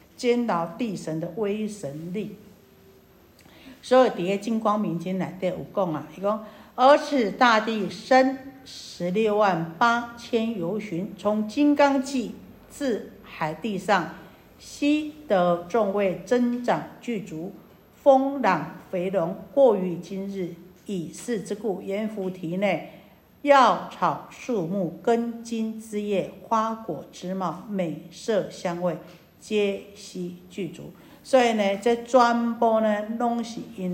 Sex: female